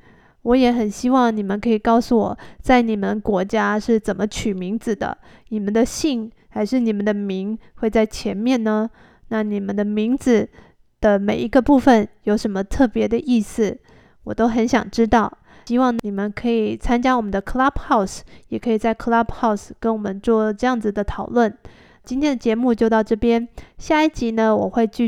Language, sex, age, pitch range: Chinese, female, 20-39, 215-245 Hz